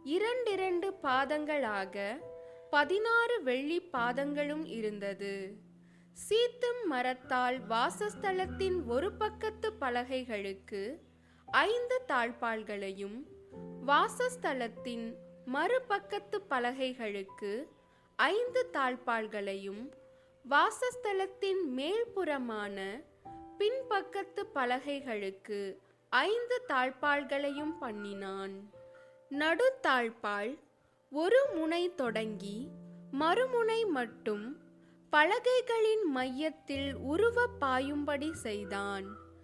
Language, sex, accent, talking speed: Tamil, female, native, 60 wpm